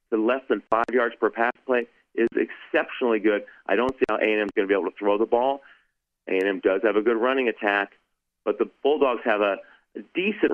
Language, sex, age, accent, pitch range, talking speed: English, male, 40-59, American, 105-140 Hz, 220 wpm